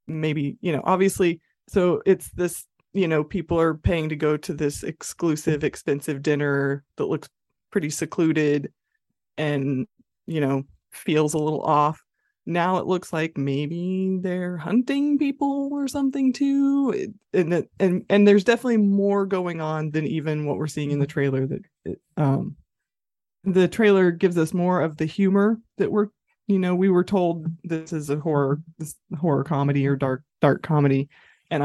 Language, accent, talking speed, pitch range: English, American, 170 wpm, 145-180 Hz